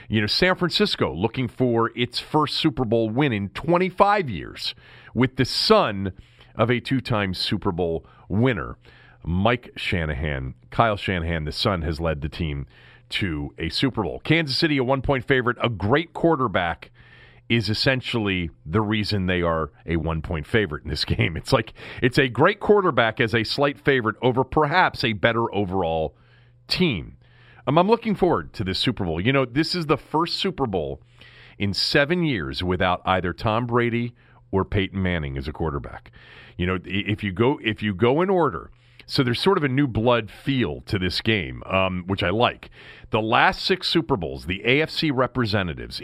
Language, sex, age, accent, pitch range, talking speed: English, male, 40-59, American, 95-135 Hz, 175 wpm